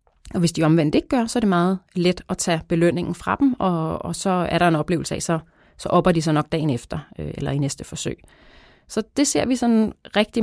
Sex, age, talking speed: female, 30-49, 245 wpm